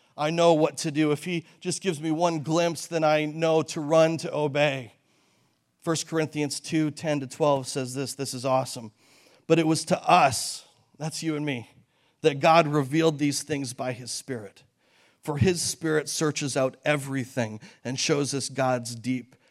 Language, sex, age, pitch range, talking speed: English, male, 40-59, 125-155 Hz, 180 wpm